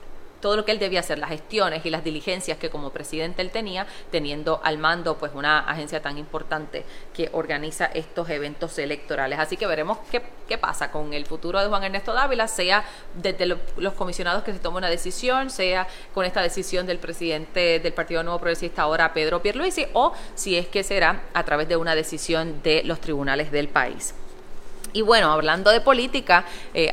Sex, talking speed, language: female, 190 wpm, English